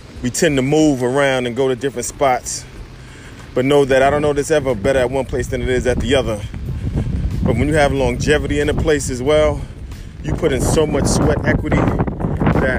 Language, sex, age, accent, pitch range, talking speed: English, male, 20-39, American, 95-145 Hz, 215 wpm